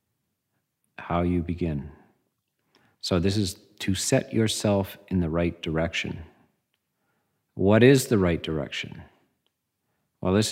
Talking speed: 115 wpm